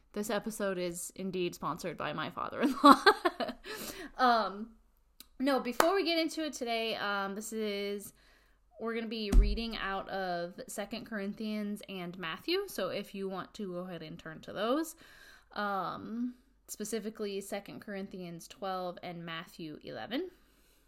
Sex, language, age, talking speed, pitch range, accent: female, English, 20-39, 145 wpm, 185-235 Hz, American